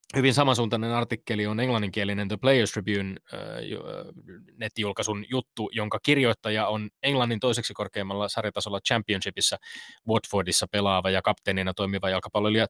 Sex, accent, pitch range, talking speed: male, native, 95-120 Hz, 120 wpm